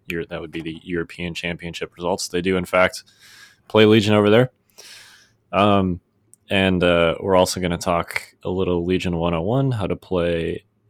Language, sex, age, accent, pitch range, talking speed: English, male, 20-39, American, 90-110 Hz, 165 wpm